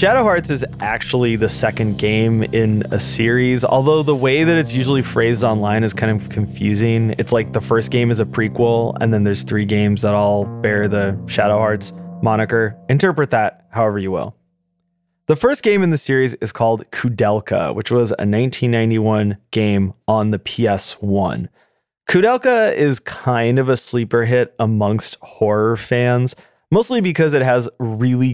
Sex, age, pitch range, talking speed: male, 20-39, 110-130 Hz, 165 wpm